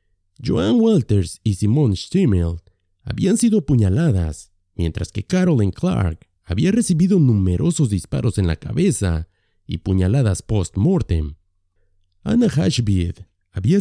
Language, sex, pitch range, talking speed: Spanish, male, 90-150 Hz, 110 wpm